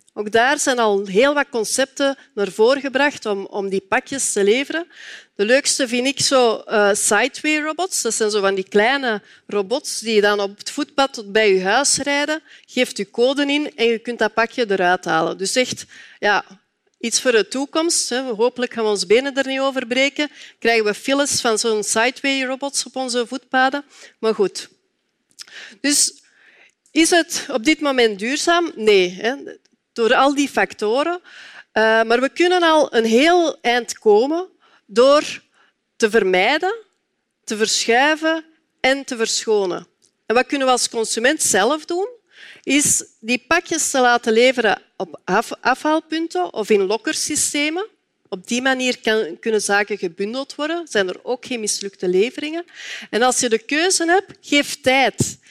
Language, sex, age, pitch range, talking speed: Dutch, female, 40-59, 225-300 Hz, 165 wpm